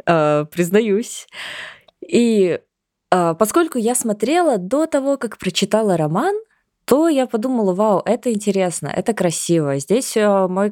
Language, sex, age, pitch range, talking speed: Russian, female, 20-39, 165-220 Hz, 110 wpm